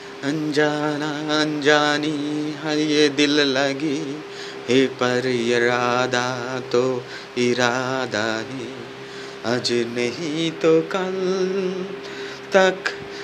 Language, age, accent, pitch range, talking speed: Bengali, 30-49, native, 120-155 Hz, 65 wpm